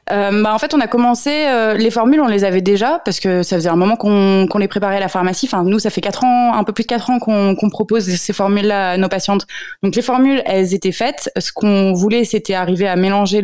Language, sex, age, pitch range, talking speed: French, female, 20-39, 180-225 Hz, 270 wpm